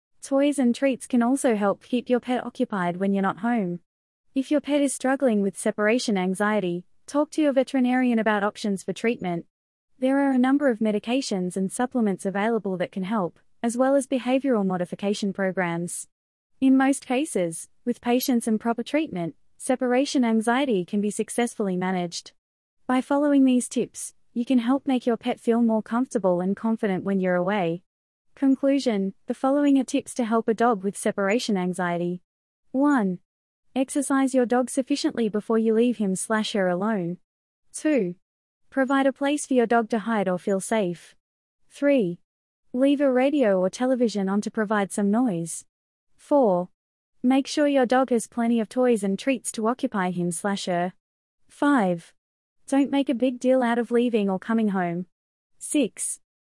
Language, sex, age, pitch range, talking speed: English, female, 20-39, 195-260 Hz, 165 wpm